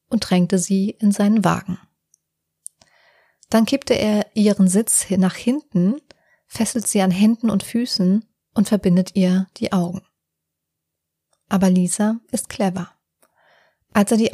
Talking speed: 130 wpm